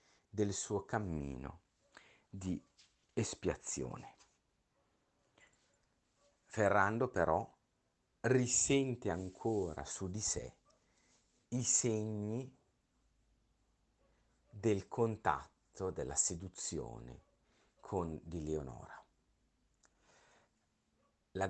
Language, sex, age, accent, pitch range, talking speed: Italian, male, 50-69, native, 75-105 Hz, 60 wpm